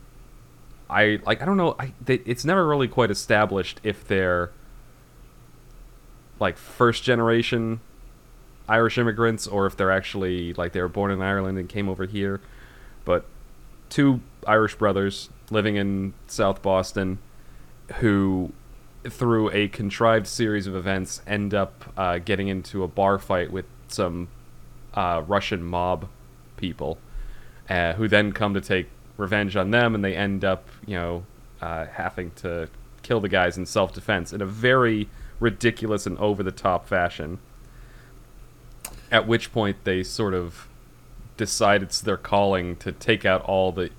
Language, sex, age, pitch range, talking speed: English, male, 30-49, 90-110 Hz, 145 wpm